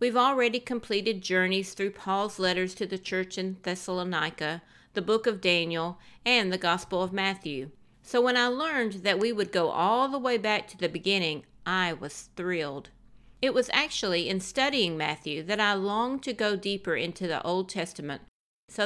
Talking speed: 180 wpm